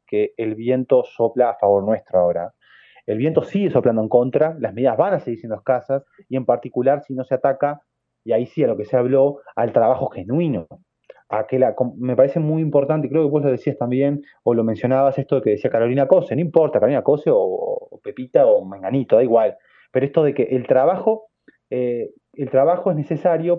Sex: male